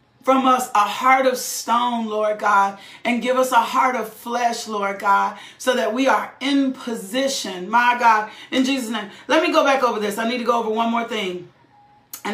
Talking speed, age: 210 wpm, 40-59